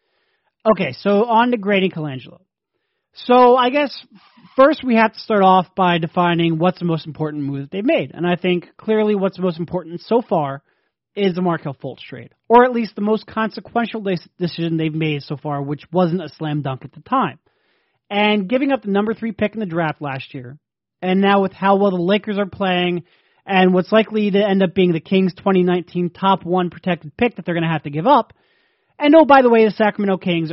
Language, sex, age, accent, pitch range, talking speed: English, male, 30-49, American, 165-220 Hz, 215 wpm